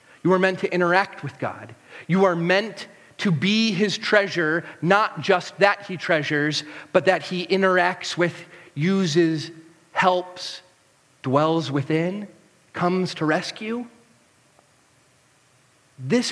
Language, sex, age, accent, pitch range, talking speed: English, male, 40-59, American, 165-240 Hz, 120 wpm